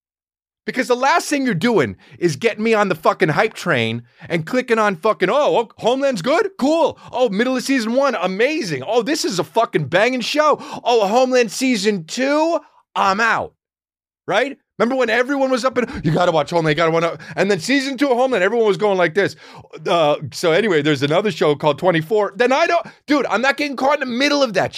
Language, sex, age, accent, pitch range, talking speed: English, male, 30-49, American, 155-255 Hz, 220 wpm